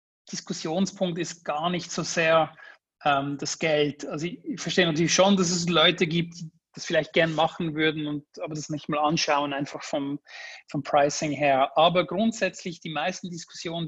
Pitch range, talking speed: 145-170 Hz, 175 wpm